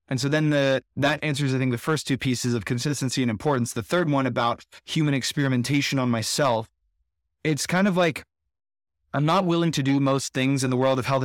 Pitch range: 120-140 Hz